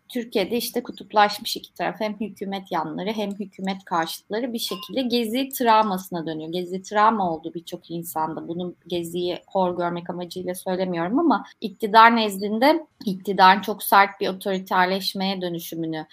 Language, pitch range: Turkish, 180-235 Hz